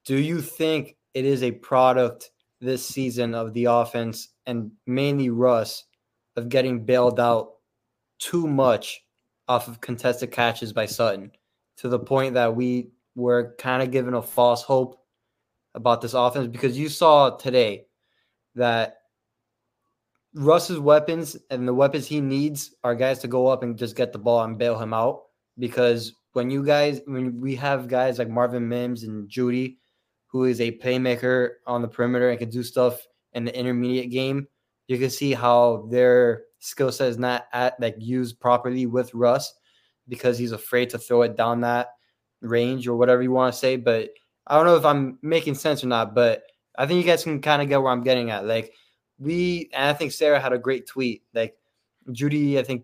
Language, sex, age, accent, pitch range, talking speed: English, male, 20-39, American, 120-135 Hz, 185 wpm